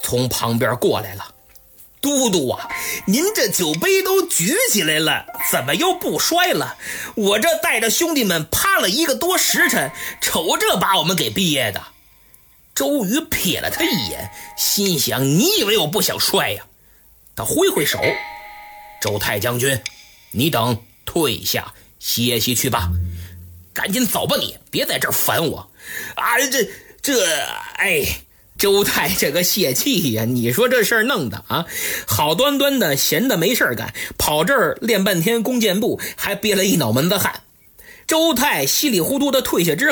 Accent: native